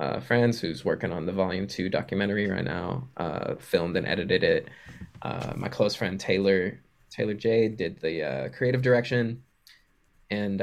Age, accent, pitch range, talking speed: 20-39, American, 90-115 Hz, 165 wpm